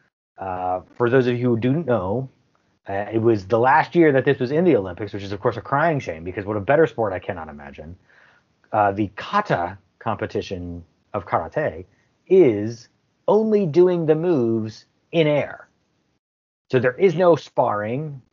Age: 30-49